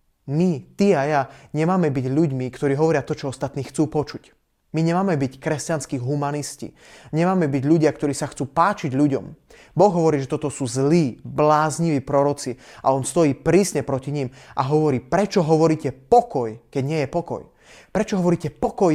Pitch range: 135-160 Hz